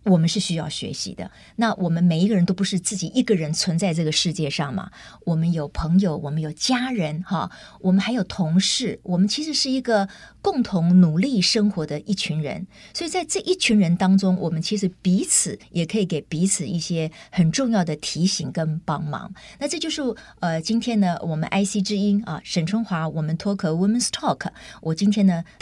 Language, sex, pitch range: Chinese, female, 165-205 Hz